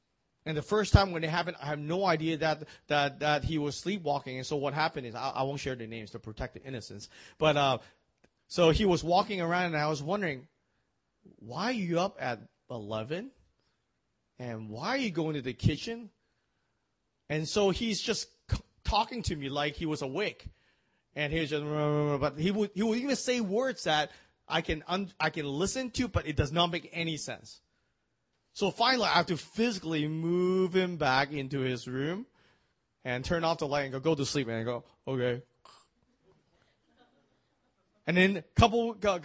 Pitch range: 145-200 Hz